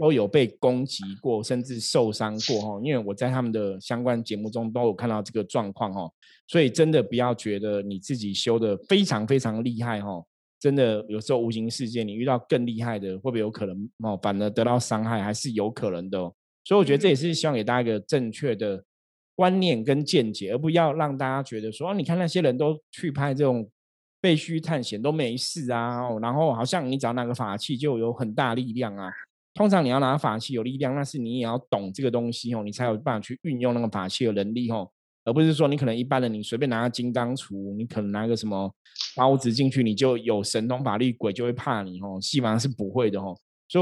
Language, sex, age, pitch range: Chinese, male, 20-39, 110-140 Hz